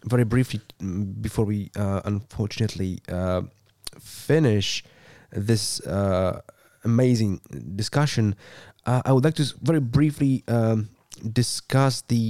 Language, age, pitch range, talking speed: English, 20-39, 105-125 Hz, 105 wpm